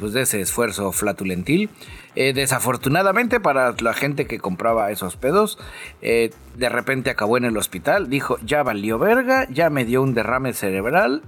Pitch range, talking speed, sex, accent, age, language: 120-155 Hz, 165 wpm, male, Mexican, 40-59, Spanish